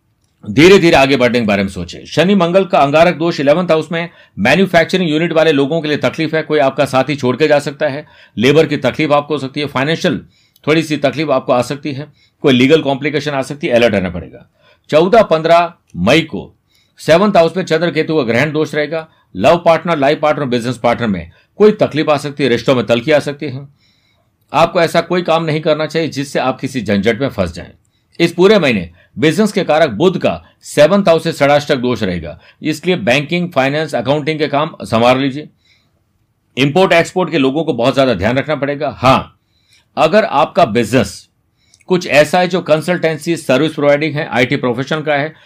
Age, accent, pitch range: 60-79, native, 120-160 Hz